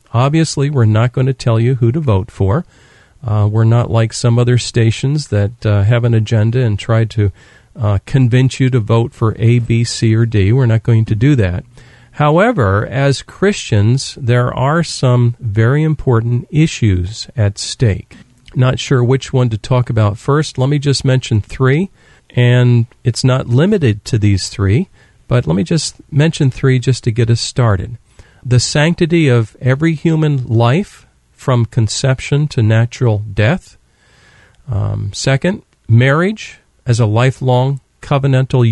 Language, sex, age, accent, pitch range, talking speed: English, male, 40-59, American, 115-135 Hz, 160 wpm